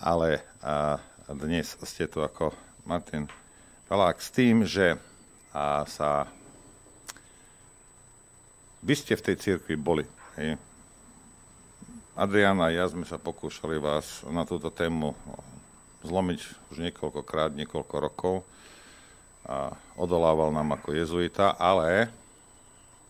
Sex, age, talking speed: male, 50-69, 100 wpm